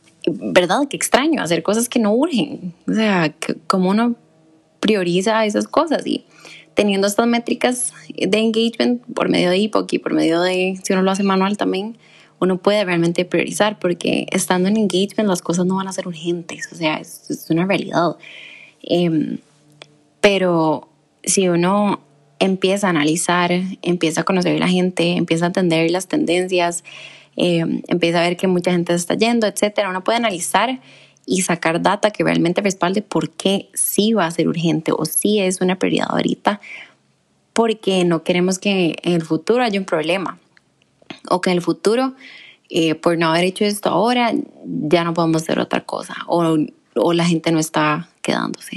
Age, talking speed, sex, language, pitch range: 20-39, 175 wpm, female, Spanish, 170-210 Hz